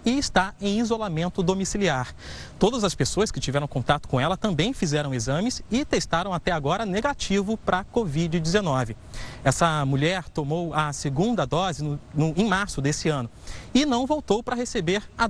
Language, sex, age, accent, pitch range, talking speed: Portuguese, male, 30-49, Brazilian, 145-210 Hz, 155 wpm